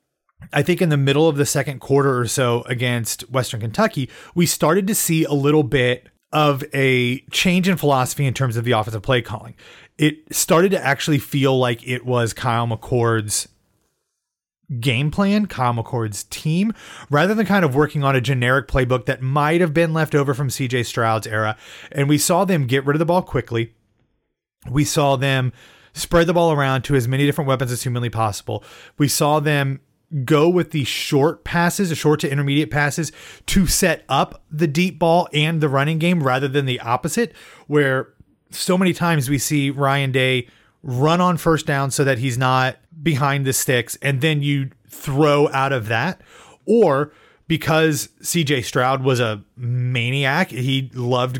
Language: English